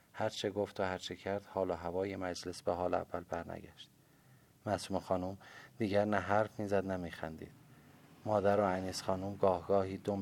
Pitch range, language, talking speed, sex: 90-100 Hz, Persian, 170 wpm, male